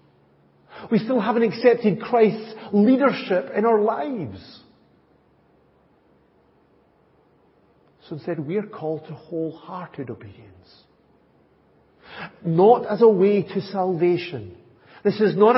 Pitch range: 125-205 Hz